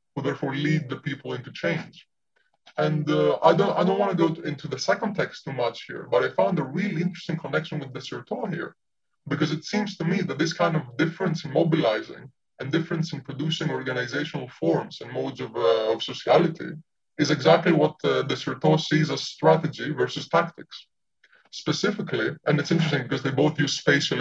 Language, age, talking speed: English, 20-39, 190 wpm